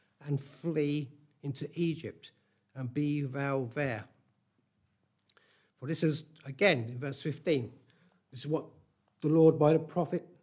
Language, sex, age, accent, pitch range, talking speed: English, male, 50-69, British, 125-160 Hz, 130 wpm